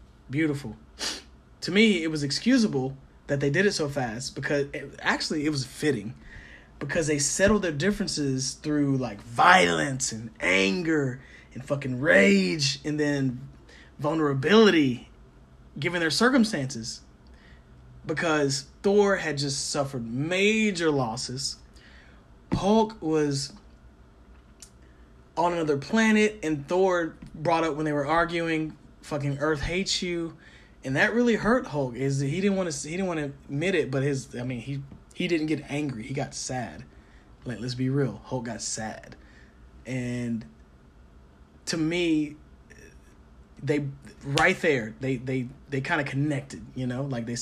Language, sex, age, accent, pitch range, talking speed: English, male, 20-39, American, 115-160 Hz, 140 wpm